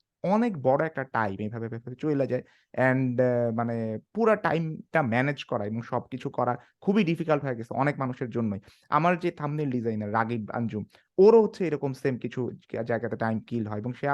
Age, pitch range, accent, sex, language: 30-49, 120-180 Hz, native, male, Bengali